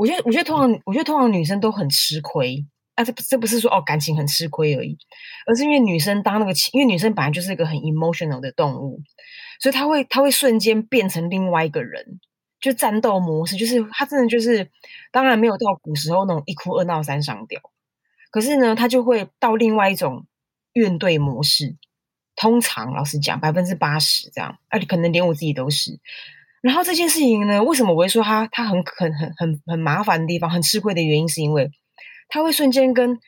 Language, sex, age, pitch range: Chinese, female, 20-39, 165-235 Hz